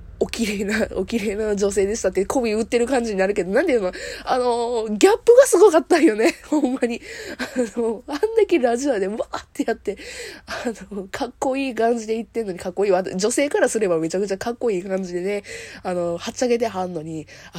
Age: 20-39